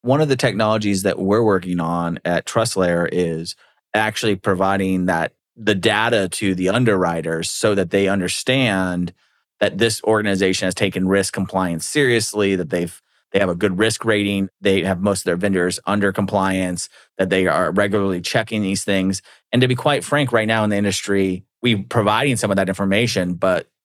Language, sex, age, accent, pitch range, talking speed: English, male, 30-49, American, 95-110 Hz, 180 wpm